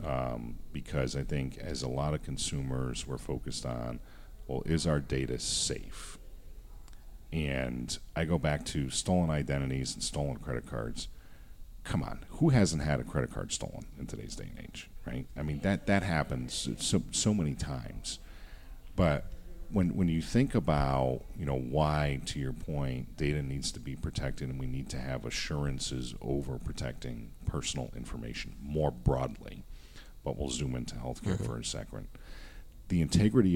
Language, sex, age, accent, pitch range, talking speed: English, male, 40-59, American, 65-80 Hz, 165 wpm